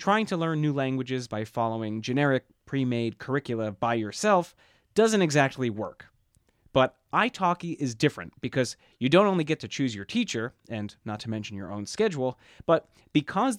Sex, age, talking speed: male, 30-49, 165 wpm